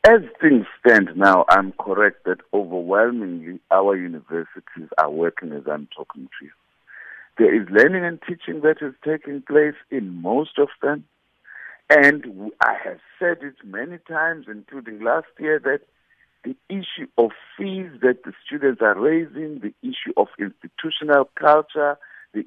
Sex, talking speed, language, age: male, 150 wpm, English, 60-79